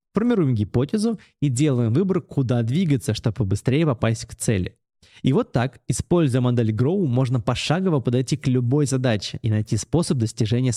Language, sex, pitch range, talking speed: Russian, male, 115-155 Hz, 155 wpm